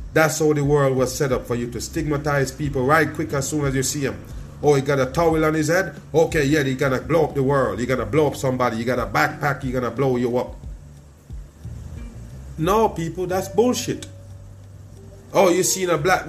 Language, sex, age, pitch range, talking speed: English, male, 30-49, 125-160 Hz, 215 wpm